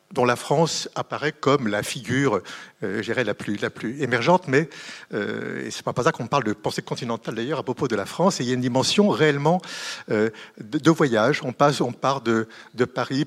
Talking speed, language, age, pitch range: 220 wpm, French, 60-79, 125-170 Hz